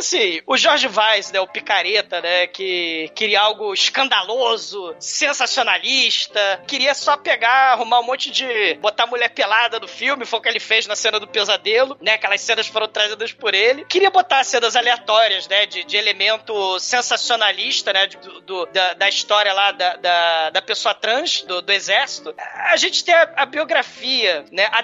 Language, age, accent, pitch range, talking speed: Portuguese, 20-39, Brazilian, 210-275 Hz, 175 wpm